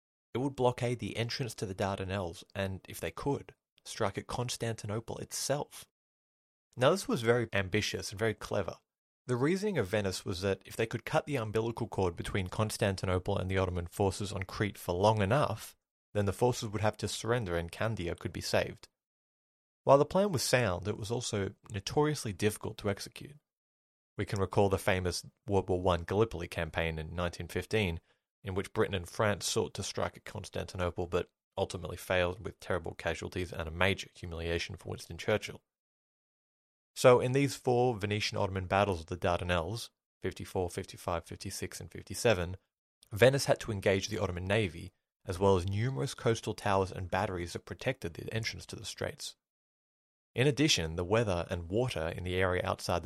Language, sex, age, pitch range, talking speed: English, male, 30-49, 90-115 Hz, 175 wpm